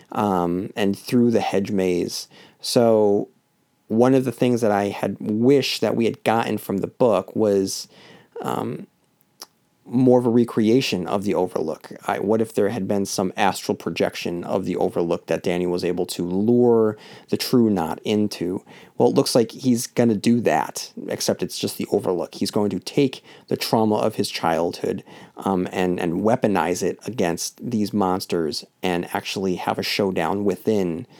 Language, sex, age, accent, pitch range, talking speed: English, male, 30-49, American, 95-115 Hz, 170 wpm